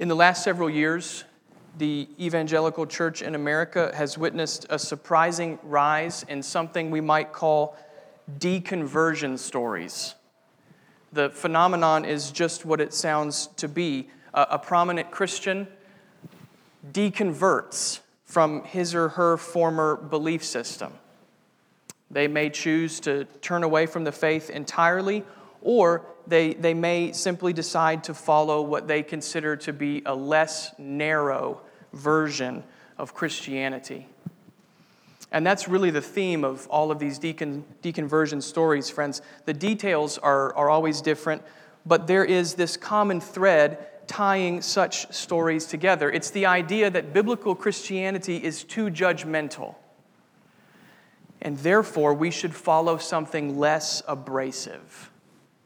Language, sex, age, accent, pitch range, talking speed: English, male, 40-59, American, 150-175 Hz, 125 wpm